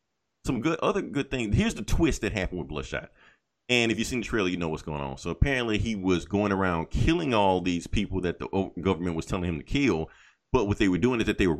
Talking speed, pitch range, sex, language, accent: 260 wpm, 85-110 Hz, male, English, American